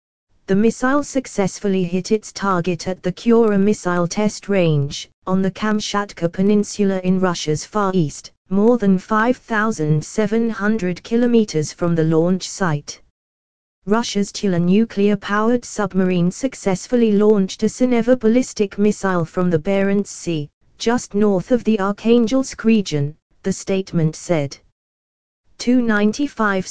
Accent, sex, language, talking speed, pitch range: British, female, English, 120 wpm, 175-210 Hz